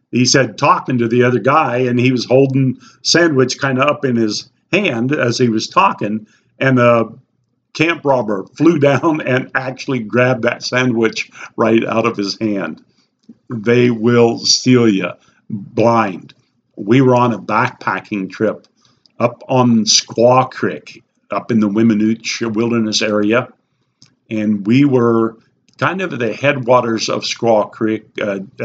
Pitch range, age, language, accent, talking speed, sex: 110-130 Hz, 50-69, English, American, 145 wpm, male